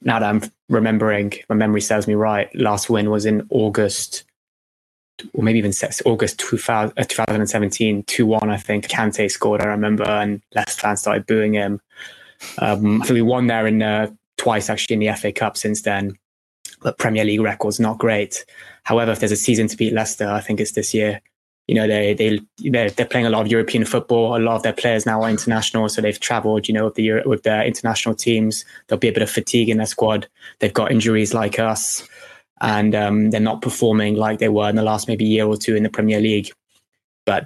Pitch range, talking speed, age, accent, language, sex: 105-115 Hz, 215 wpm, 20-39, British, English, male